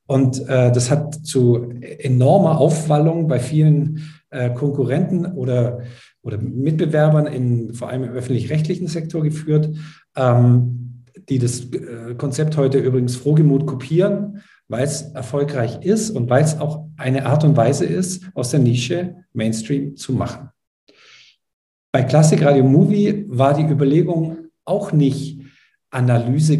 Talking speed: 135 wpm